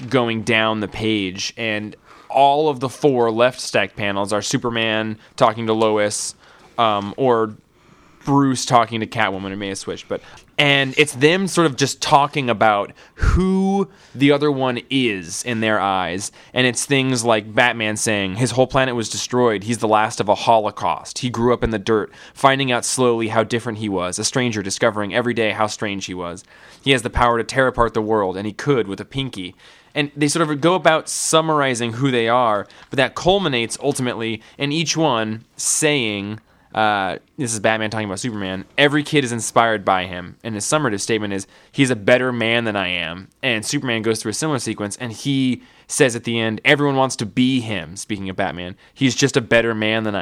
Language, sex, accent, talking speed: English, male, American, 200 wpm